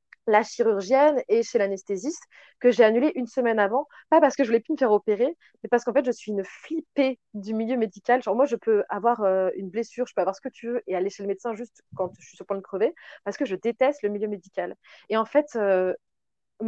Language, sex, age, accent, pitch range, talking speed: French, female, 20-39, French, 200-260 Hz, 255 wpm